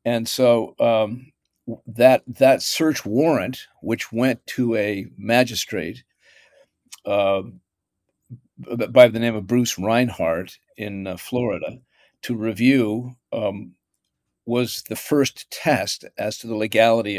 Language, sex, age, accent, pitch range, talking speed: English, male, 50-69, American, 100-125 Hz, 120 wpm